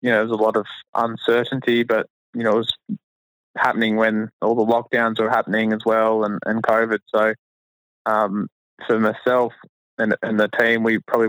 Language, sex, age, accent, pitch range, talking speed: English, male, 20-39, Australian, 110-125 Hz, 180 wpm